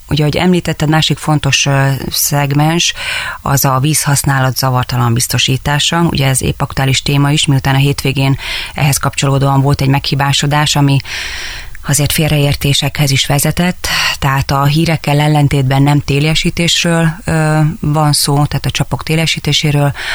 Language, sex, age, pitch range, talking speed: Hungarian, female, 30-49, 135-150 Hz, 120 wpm